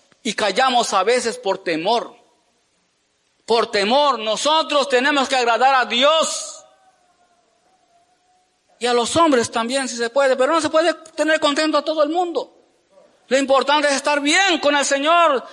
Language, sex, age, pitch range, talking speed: Spanish, male, 40-59, 260-330 Hz, 155 wpm